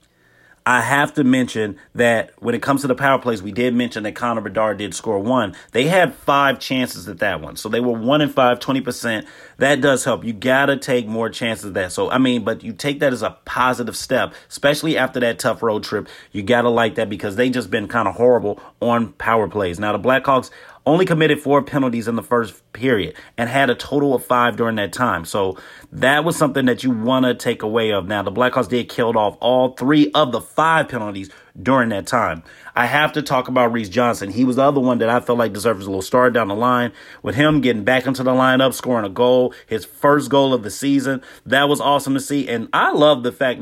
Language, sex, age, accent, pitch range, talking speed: English, male, 30-49, American, 115-135 Hz, 235 wpm